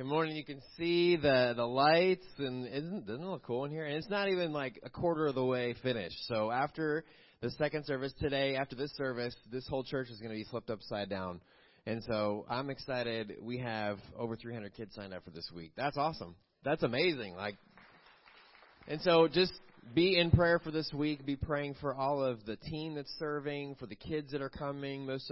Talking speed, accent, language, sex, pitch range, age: 215 wpm, American, English, male, 95-135 Hz, 30-49